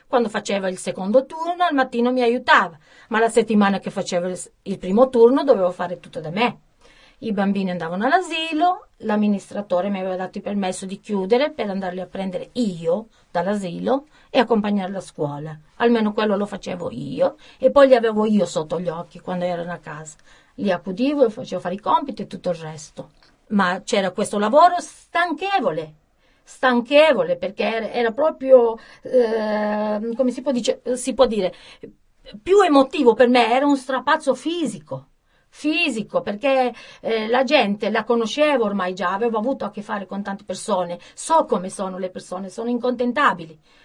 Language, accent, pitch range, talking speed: Italian, native, 190-260 Hz, 165 wpm